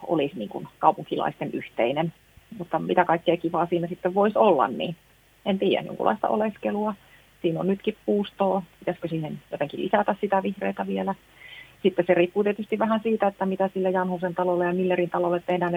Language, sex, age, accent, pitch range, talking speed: Finnish, female, 30-49, native, 155-190 Hz, 165 wpm